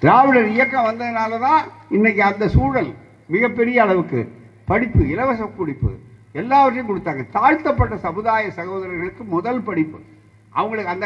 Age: 50-69